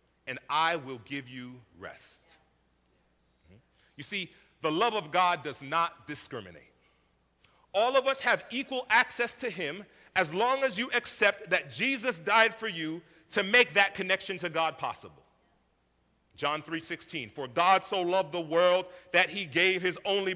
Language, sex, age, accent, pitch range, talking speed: English, male, 40-59, American, 155-225 Hz, 160 wpm